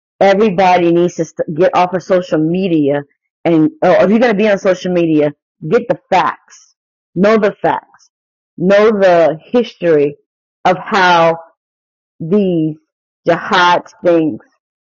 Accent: American